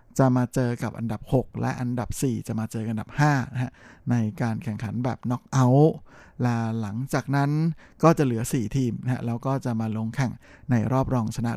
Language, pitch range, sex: Thai, 120-140 Hz, male